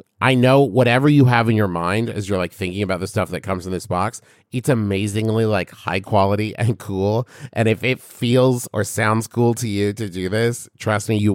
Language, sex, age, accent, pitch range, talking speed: English, male, 30-49, American, 100-130 Hz, 220 wpm